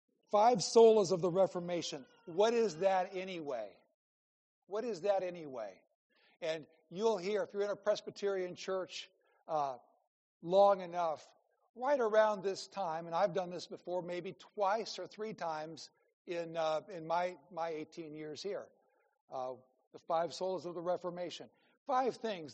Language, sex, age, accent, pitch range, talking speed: English, male, 60-79, American, 160-205 Hz, 150 wpm